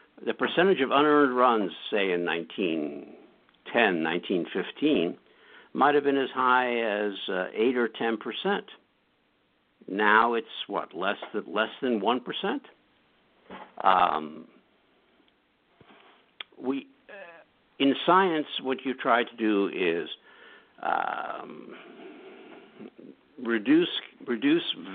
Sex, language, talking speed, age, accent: male, English, 100 wpm, 60-79, American